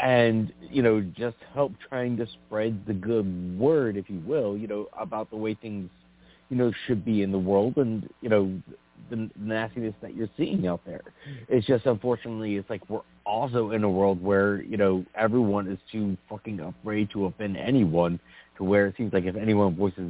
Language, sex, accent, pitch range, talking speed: English, male, American, 90-115 Hz, 195 wpm